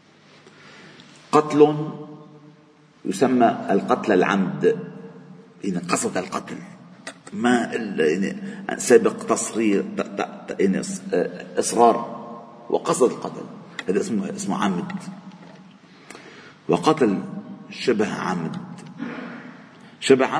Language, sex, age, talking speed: Arabic, male, 50-69, 70 wpm